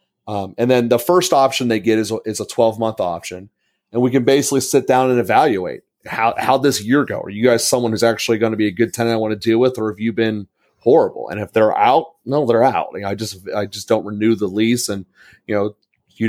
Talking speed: 260 wpm